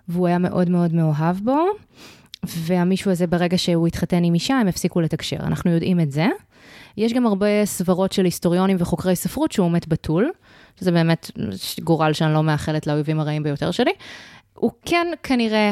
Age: 20-39